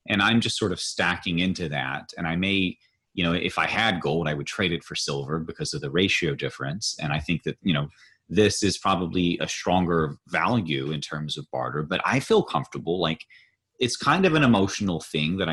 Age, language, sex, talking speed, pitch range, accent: 30-49, English, male, 215 wpm, 75-95 Hz, American